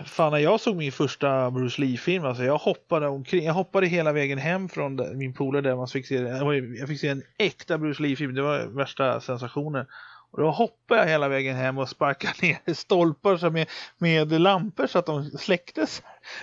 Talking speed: 195 wpm